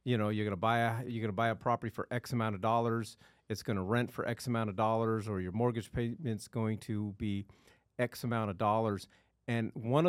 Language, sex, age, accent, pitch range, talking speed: English, male, 40-59, American, 100-125 Hz, 220 wpm